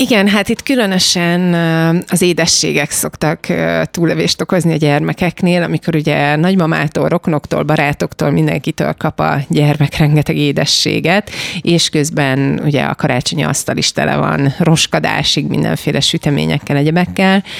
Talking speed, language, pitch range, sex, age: 120 wpm, Hungarian, 140-170 Hz, female, 30-49